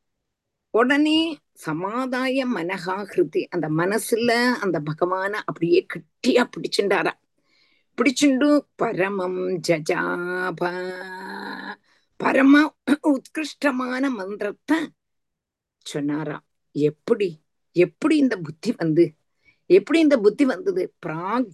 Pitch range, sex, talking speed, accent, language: 185-285 Hz, female, 75 wpm, native, Tamil